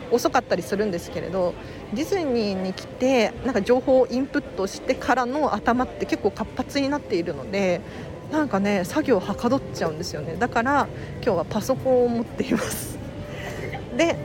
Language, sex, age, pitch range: Japanese, female, 40-59, 190-255 Hz